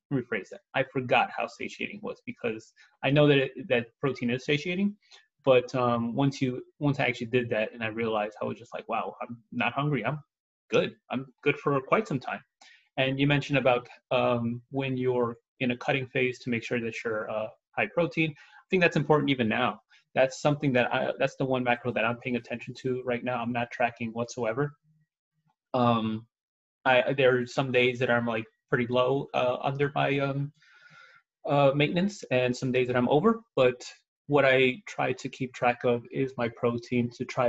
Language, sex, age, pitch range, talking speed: English, male, 20-39, 120-140 Hz, 205 wpm